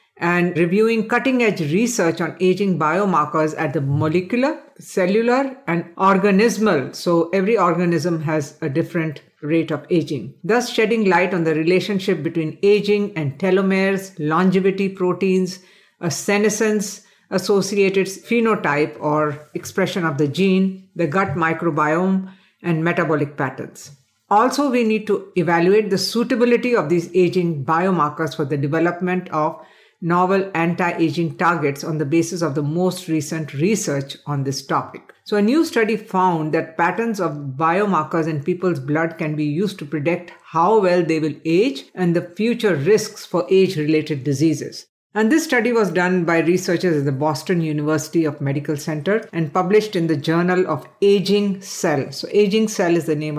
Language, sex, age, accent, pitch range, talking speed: English, female, 50-69, Indian, 155-195 Hz, 150 wpm